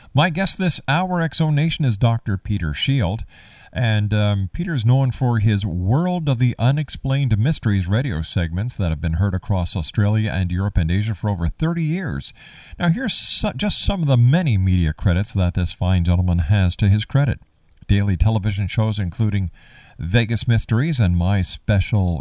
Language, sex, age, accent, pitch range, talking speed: English, male, 50-69, American, 95-125 Hz, 170 wpm